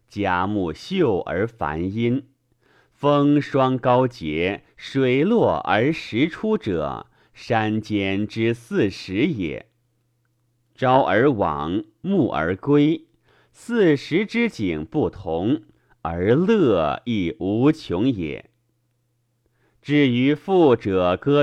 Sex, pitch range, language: male, 110-145 Hz, Chinese